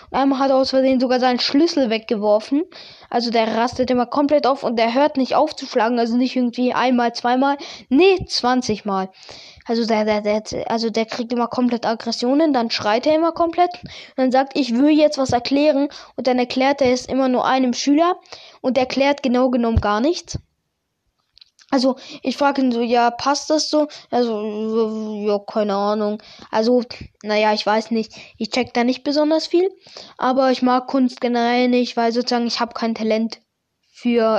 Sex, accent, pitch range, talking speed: female, German, 230-275 Hz, 185 wpm